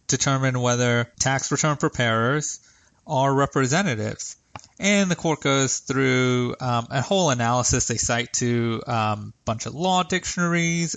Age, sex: 30-49, male